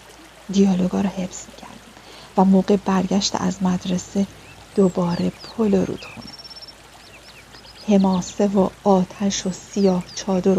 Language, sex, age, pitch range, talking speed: Persian, female, 40-59, 185-215 Hz, 110 wpm